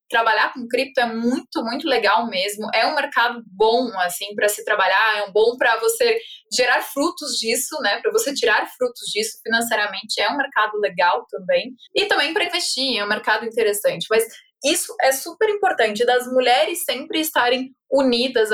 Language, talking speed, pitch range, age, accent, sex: Portuguese, 175 wpm, 225-300 Hz, 20-39, Brazilian, female